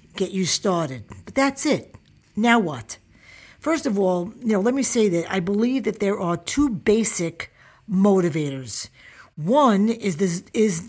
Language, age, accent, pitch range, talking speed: English, 50-69, American, 165-225 Hz, 155 wpm